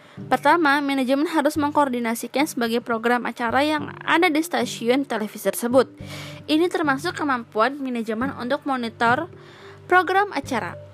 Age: 20-39